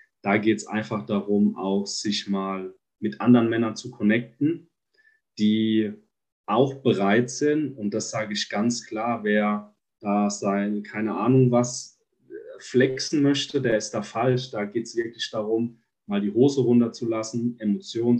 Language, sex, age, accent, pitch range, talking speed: German, male, 30-49, German, 105-125 Hz, 150 wpm